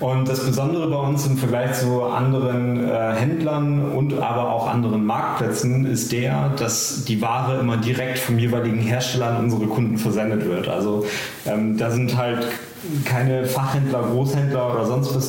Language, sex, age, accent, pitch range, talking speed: German, male, 30-49, German, 110-130 Hz, 170 wpm